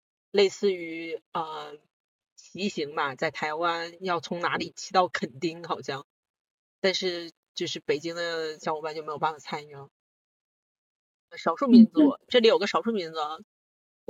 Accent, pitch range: native, 165-210 Hz